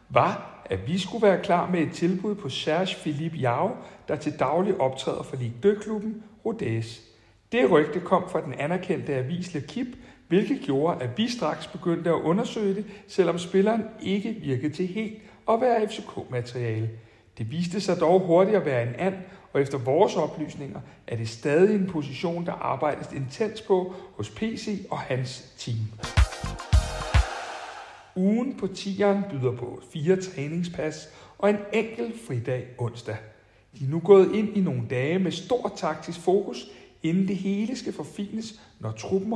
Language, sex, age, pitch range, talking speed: Danish, male, 60-79, 130-200 Hz, 160 wpm